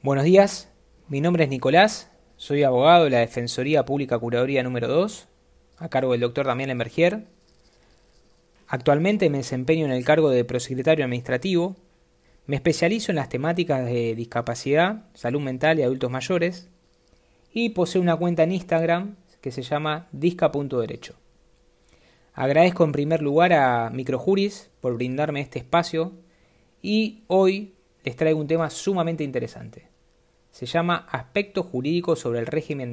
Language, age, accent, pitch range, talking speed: Spanish, 20-39, Argentinian, 130-170 Hz, 140 wpm